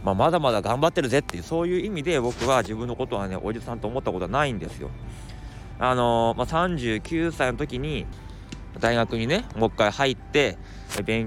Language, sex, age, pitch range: Japanese, male, 20-39, 105-145 Hz